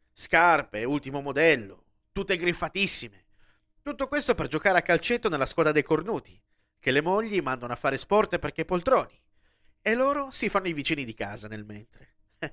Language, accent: Italian, native